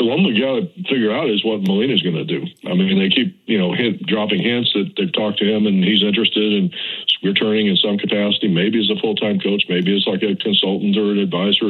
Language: English